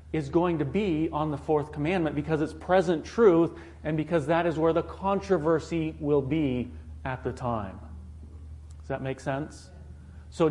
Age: 40-59